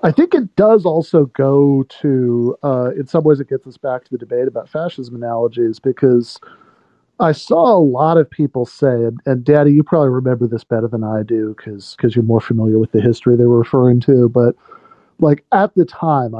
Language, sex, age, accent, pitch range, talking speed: English, male, 40-59, American, 125-155 Hz, 210 wpm